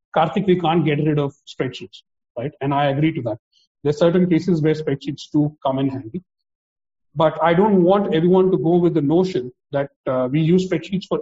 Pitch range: 140-175 Hz